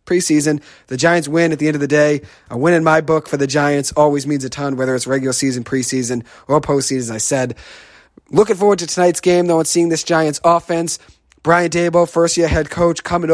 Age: 30-49